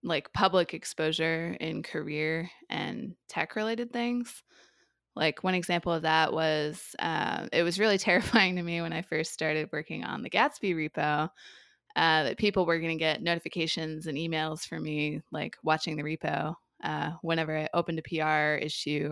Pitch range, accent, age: 155-180 Hz, American, 20-39